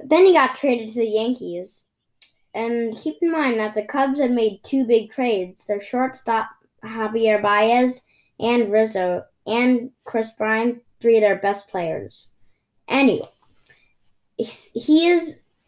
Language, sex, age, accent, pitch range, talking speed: English, female, 10-29, American, 200-250 Hz, 135 wpm